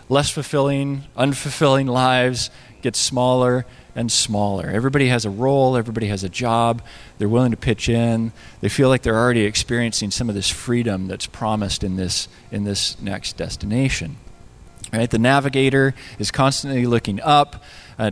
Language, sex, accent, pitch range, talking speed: English, male, American, 105-140 Hz, 155 wpm